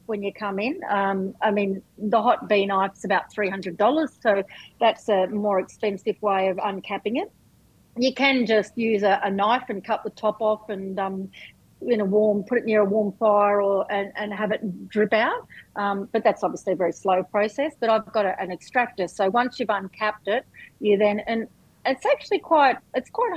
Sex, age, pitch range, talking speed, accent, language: female, 40-59, 195-220 Hz, 210 wpm, Australian, English